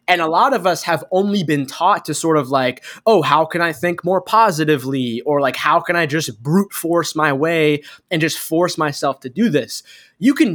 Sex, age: male, 20-39